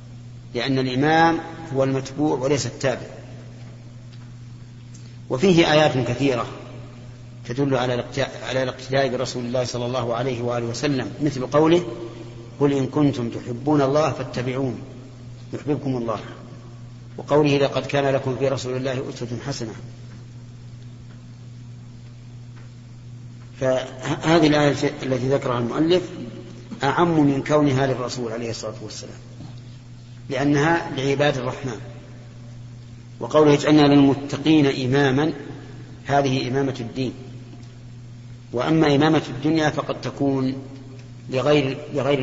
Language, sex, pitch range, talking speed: Arabic, male, 120-140 Hz, 95 wpm